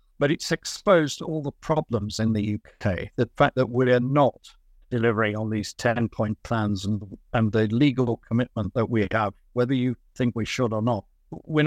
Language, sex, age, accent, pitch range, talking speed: English, male, 50-69, British, 110-130 Hz, 185 wpm